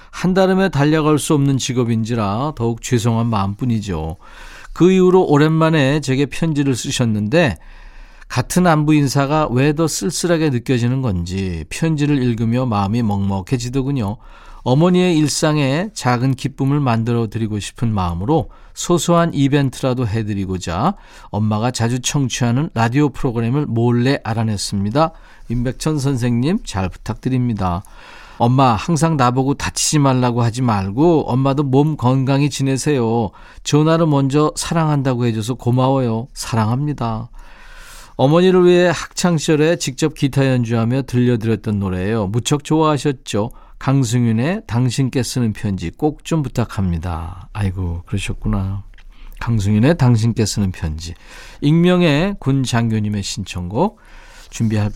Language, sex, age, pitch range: Korean, male, 40-59, 115-150 Hz